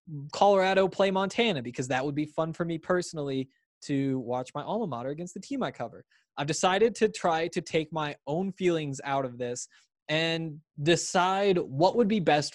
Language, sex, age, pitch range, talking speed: English, male, 20-39, 140-175 Hz, 185 wpm